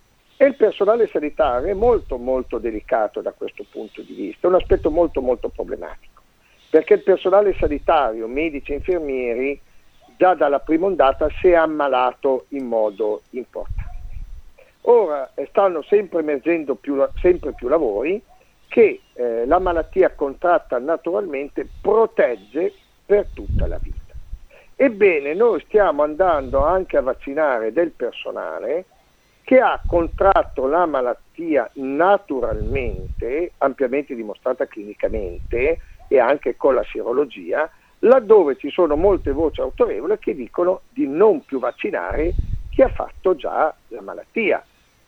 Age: 50-69